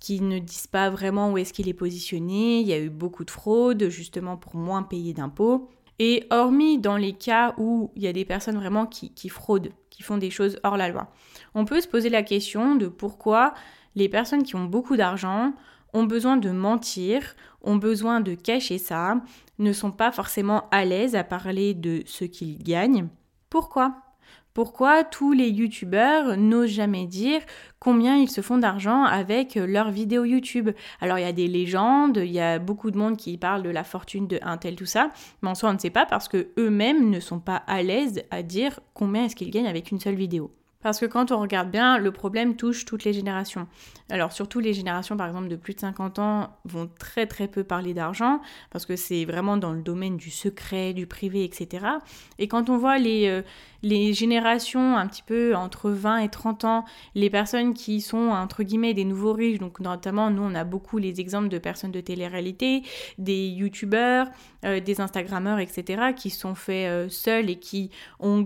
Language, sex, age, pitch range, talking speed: French, female, 20-39, 185-230 Hz, 205 wpm